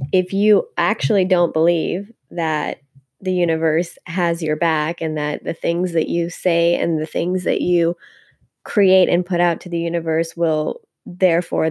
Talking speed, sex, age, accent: 165 wpm, female, 20-39, American